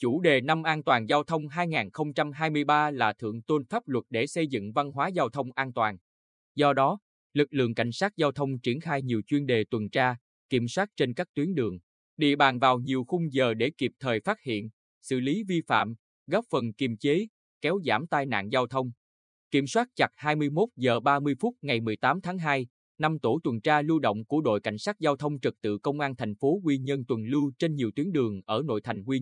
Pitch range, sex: 115-150 Hz, male